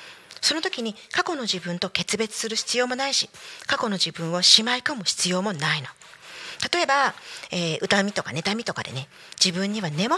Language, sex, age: Japanese, female, 40-59